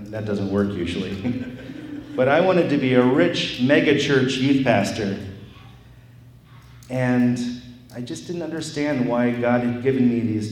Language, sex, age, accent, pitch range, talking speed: English, male, 40-59, American, 110-130 Hz, 150 wpm